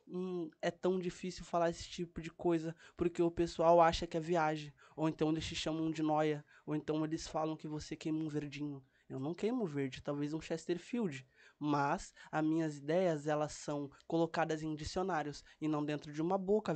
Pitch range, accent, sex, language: 155-195 Hz, Brazilian, male, Portuguese